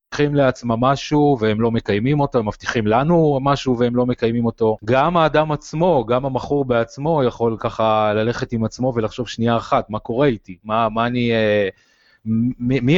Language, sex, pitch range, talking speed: Hebrew, male, 110-135 Hz, 170 wpm